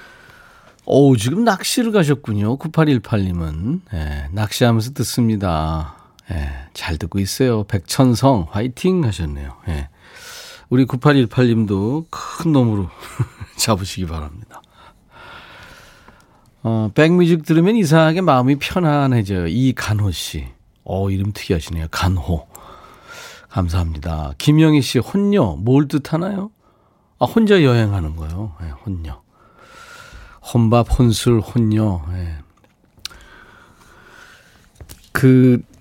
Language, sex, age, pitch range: Korean, male, 40-59, 95-140 Hz